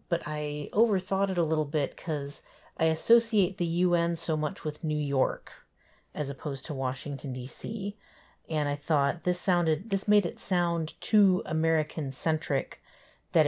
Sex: female